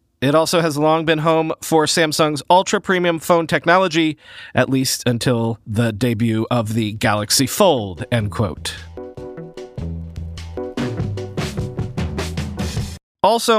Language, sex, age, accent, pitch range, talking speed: English, male, 40-59, American, 130-175 Hz, 100 wpm